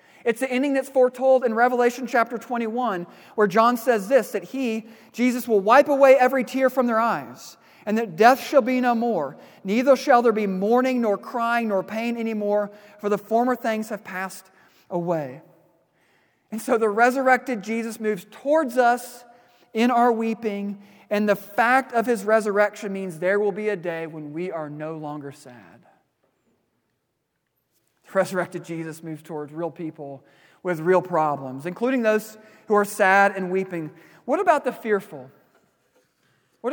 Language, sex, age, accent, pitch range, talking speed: English, male, 40-59, American, 195-245 Hz, 160 wpm